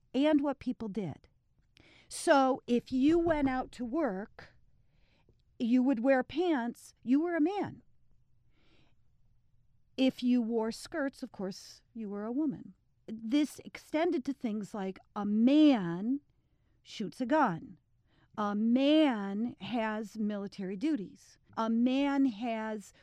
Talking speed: 120 wpm